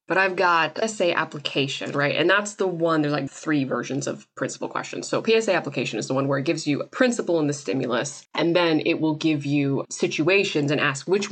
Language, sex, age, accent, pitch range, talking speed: English, female, 20-39, American, 145-190 Hz, 225 wpm